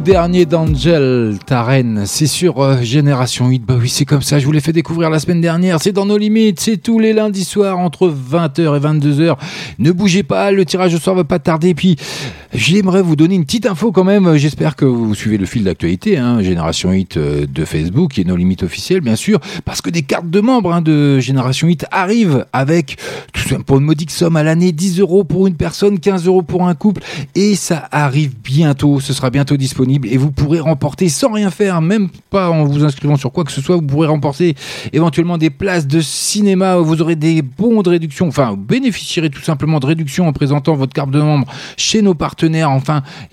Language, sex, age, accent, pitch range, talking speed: French, male, 40-59, French, 135-175 Hz, 225 wpm